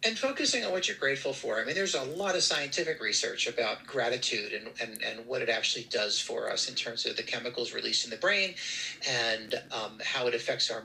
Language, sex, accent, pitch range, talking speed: English, male, American, 135-215 Hz, 225 wpm